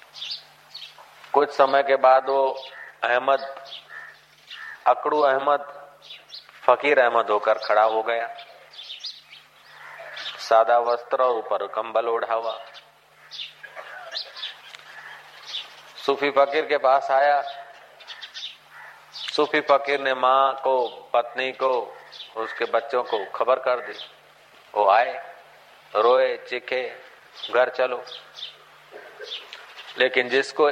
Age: 40-59